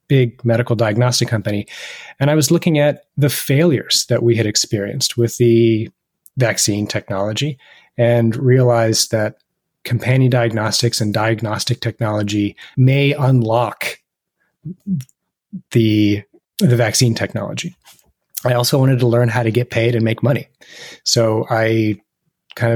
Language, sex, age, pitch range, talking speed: English, male, 30-49, 105-125 Hz, 125 wpm